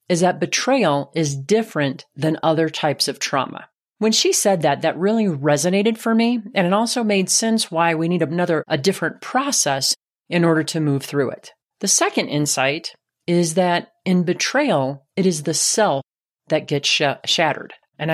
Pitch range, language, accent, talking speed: 150-190 Hz, English, American, 170 wpm